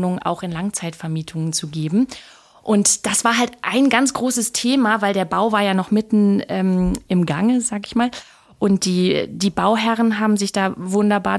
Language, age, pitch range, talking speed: German, 30-49, 180-210 Hz, 180 wpm